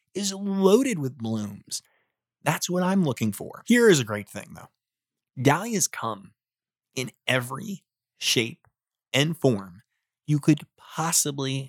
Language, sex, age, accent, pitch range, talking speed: English, male, 30-49, American, 120-160 Hz, 130 wpm